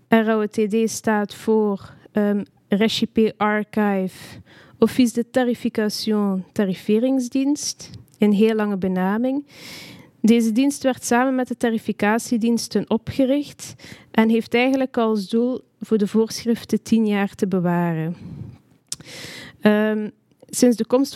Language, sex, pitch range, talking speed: Dutch, female, 195-235 Hz, 110 wpm